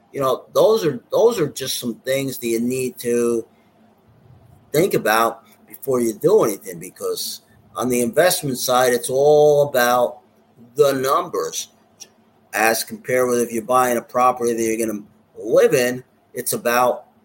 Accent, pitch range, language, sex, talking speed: American, 120-155 Hz, English, male, 155 wpm